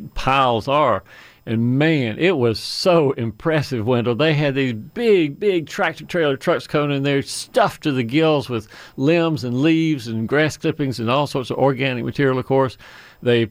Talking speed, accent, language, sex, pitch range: 180 wpm, American, English, male, 115-150 Hz